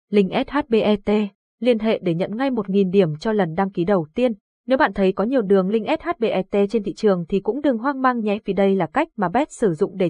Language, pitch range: Vietnamese, 190-235 Hz